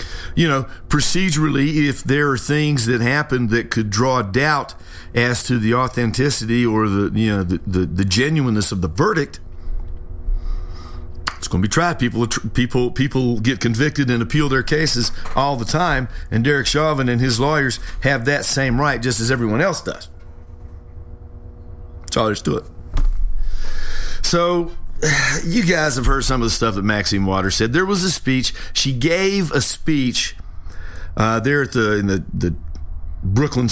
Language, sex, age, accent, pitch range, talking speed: English, male, 50-69, American, 90-135 Hz, 160 wpm